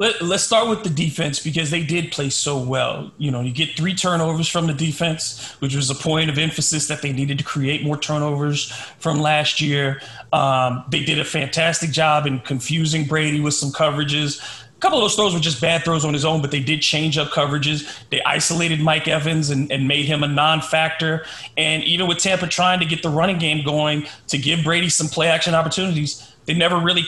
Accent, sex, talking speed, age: American, male, 215 wpm, 30-49